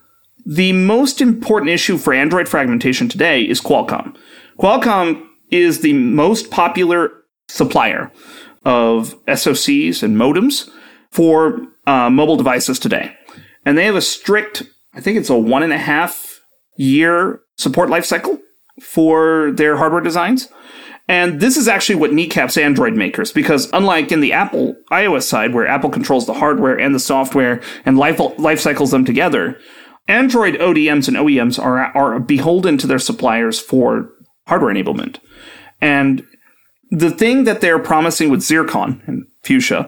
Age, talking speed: 40-59, 145 wpm